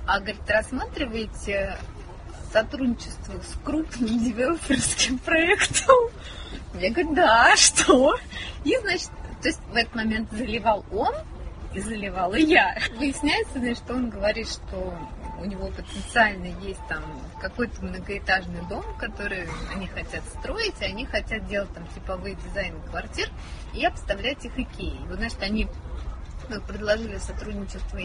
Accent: native